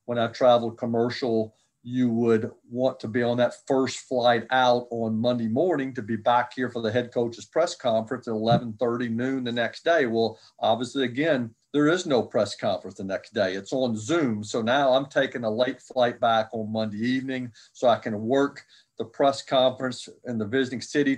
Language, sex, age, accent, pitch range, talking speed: English, male, 40-59, American, 115-135 Hz, 195 wpm